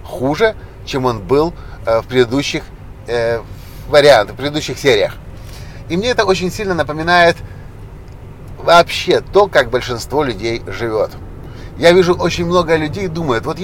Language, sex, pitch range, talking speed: Russian, male, 125-170 Hz, 130 wpm